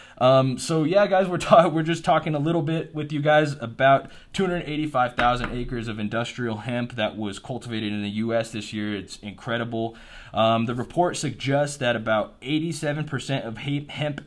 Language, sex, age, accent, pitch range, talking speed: English, male, 20-39, American, 110-140 Hz, 170 wpm